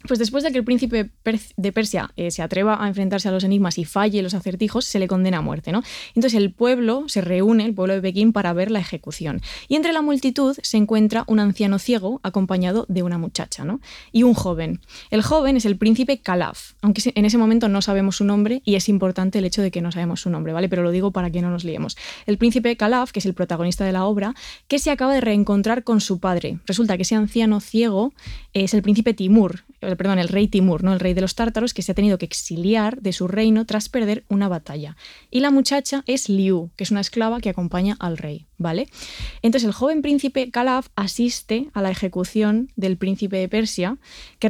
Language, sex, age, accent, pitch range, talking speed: Spanish, female, 20-39, Spanish, 185-230 Hz, 225 wpm